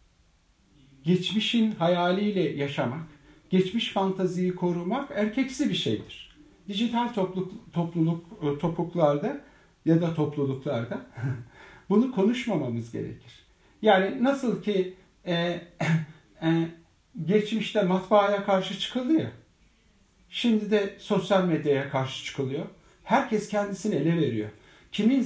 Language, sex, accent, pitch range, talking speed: Turkish, male, native, 150-200 Hz, 95 wpm